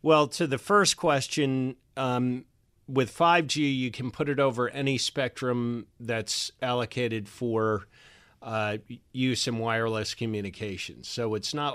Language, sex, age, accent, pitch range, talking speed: English, male, 40-59, American, 110-130 Hz, 135 wpm